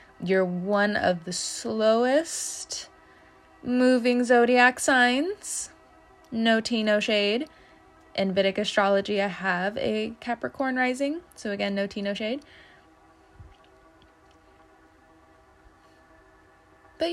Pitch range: 180-235 Hz